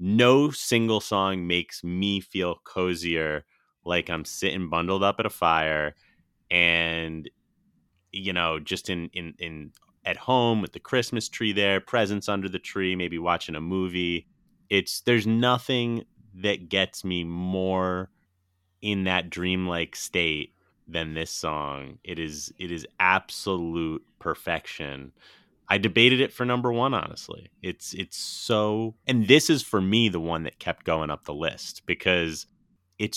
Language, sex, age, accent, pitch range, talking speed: English, male, 30-49, American, 85-100 Hz, 150 wpm